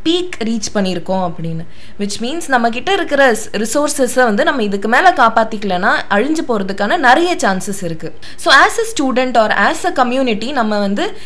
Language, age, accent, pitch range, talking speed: Tamil, 20-39, native, 205-285 Hz, 160 wpm